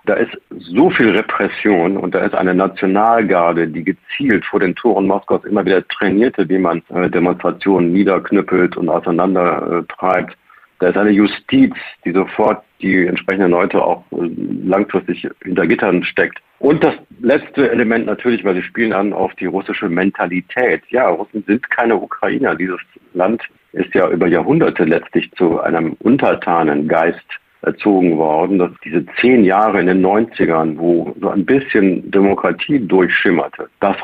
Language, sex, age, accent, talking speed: German, male, 50-69, German, 150 wpm